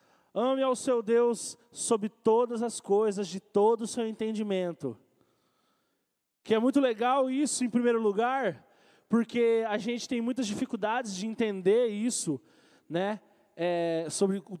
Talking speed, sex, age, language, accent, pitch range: 135 wpm, male, 20-39, Portuguese, Brazilian, 195-250 Hz